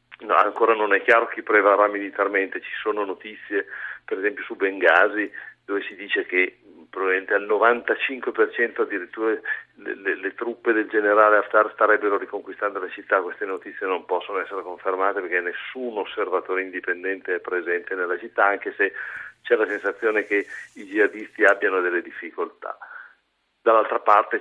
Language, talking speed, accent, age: Italian, 150 wpm, native, 50-69